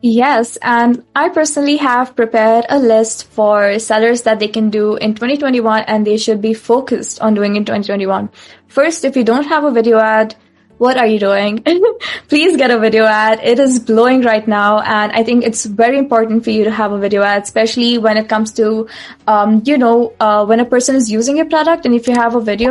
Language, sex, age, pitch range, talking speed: English, female, 20-39, 220-255 Hz, 215 wpm